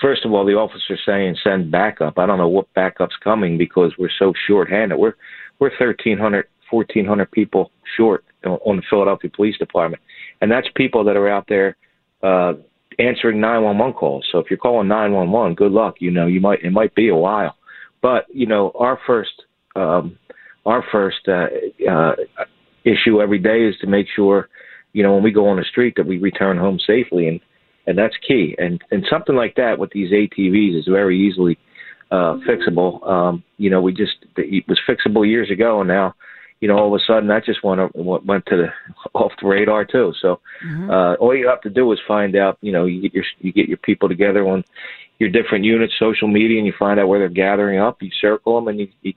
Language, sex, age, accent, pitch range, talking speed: English, male, 40-59, American, 95-110 Hz, 210 wpm